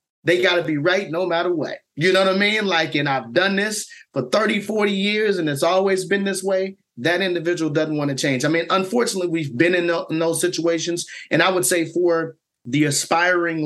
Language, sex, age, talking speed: English, male, 30-49, 220 wpm